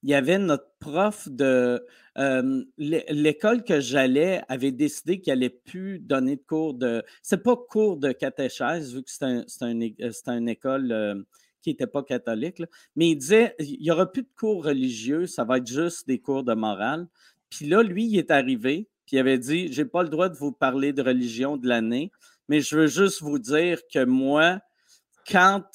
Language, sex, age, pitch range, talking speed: French, male, 50-69, 135-195 Hz, 205 wpm